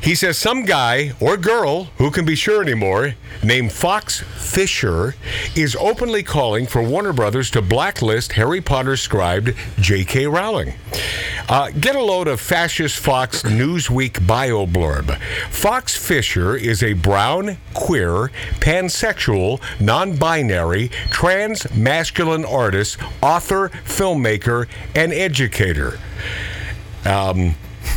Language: English